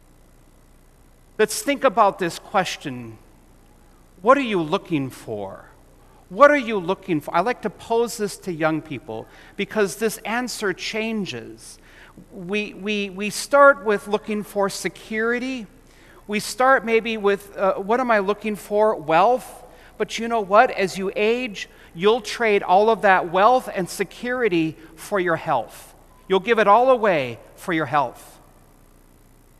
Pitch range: 180-225 Hz